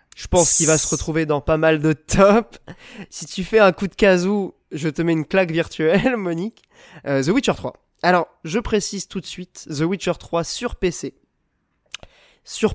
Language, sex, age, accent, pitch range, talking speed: French, male, 20-39, French, 140-175 Hz, 195 wpm